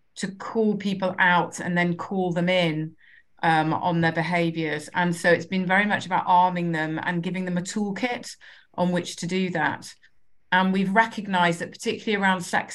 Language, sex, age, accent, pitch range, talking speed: English, female, 30-49, British, 170-195 Hz, 185 wpm